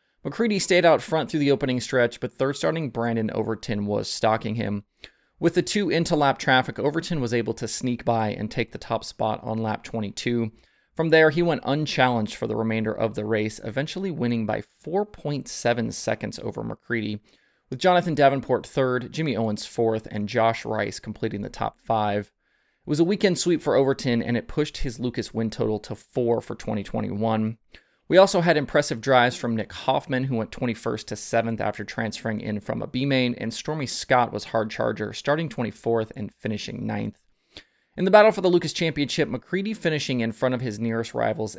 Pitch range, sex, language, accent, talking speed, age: 110-145 Hz, male, English, American, 190 wpm, 20-39